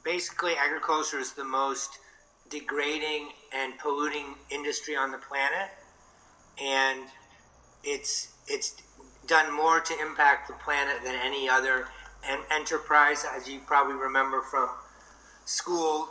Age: 40-59